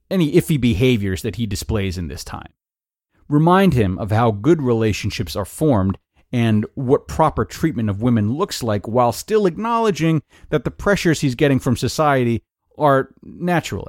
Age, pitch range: 30-49, 105-130 Hz